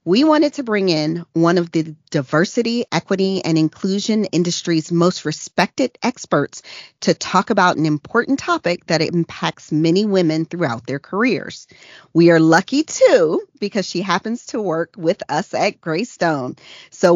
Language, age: English, 40-59